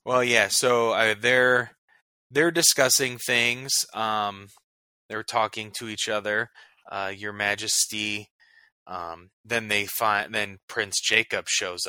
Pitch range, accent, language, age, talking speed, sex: 95-110 Hz, American, English, 20-39, 125 wpm, male